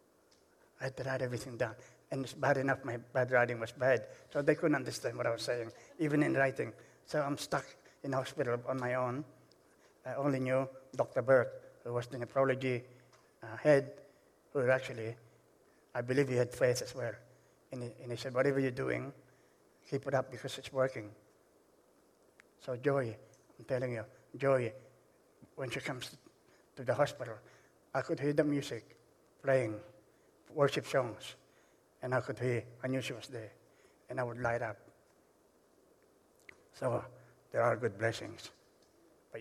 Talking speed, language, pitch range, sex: 160 wpm, English, 120-140 Hz, male